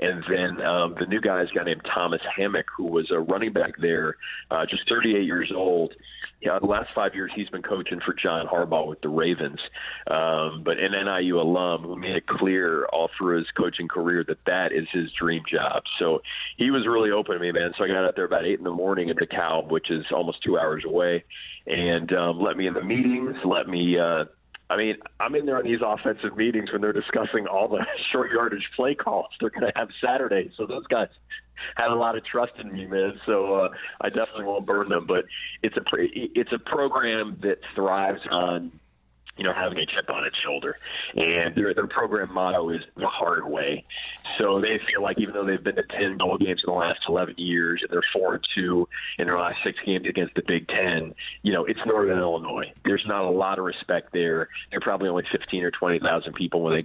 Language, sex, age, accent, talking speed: English, male, 40-59, American, 220 wpm